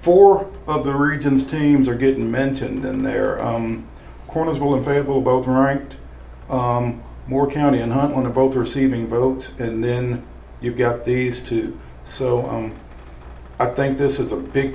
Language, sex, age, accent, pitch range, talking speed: English, male, 50-69, American, 110-140 Hz, 165 wpm